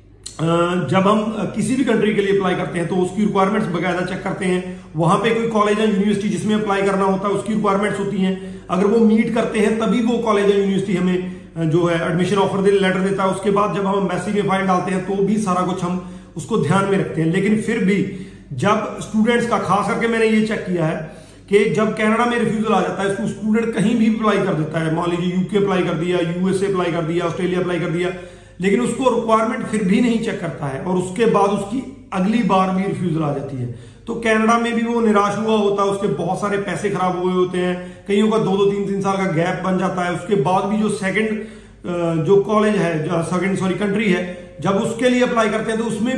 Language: Hindi